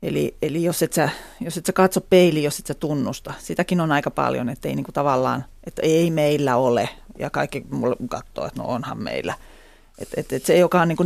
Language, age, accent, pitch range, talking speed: Finnish, 30-49, native, 150-180 Hz, 215 wpm